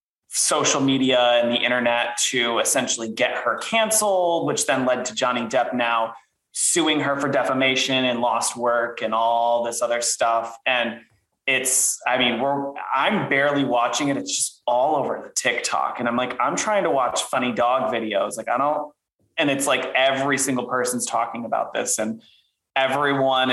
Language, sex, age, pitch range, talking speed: English, male, 20-39, 120-145 Hz, 175 wpm